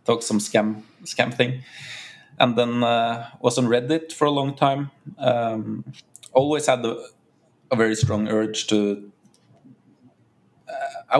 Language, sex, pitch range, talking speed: English, male, 105-125 Hz, 140 wpm